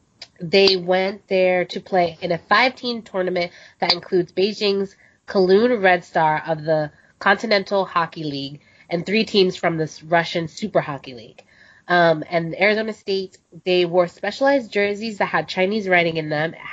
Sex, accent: female, American